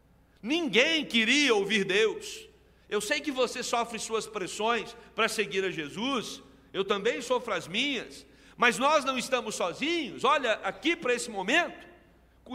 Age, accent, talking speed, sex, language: 60-79, Brazilian, 145 wpm, male, Portuguese